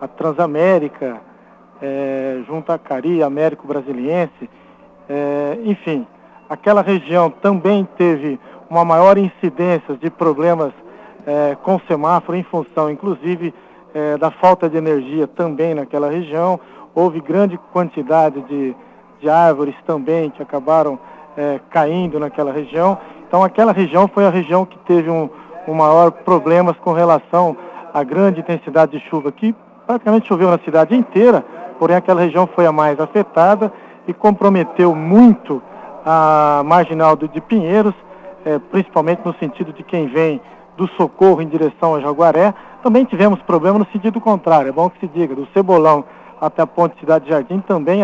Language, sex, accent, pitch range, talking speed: Portuguese, male, Brazilian, 155-190 Hz, 150 wpm